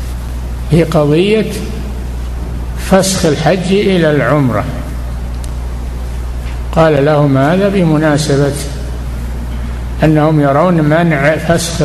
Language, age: Arabic, 60-79